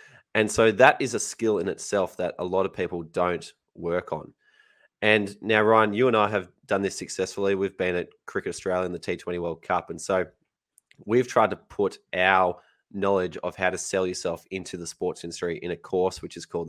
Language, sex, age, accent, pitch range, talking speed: English, male, 20-39, Australian, 90-105 Hz, 210 wpm